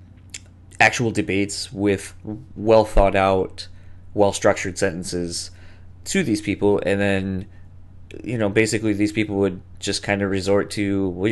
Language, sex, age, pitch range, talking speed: English, male, 20-39, 90-105 Hz, 120 wpm